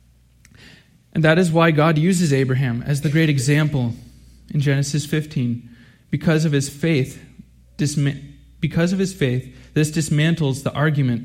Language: English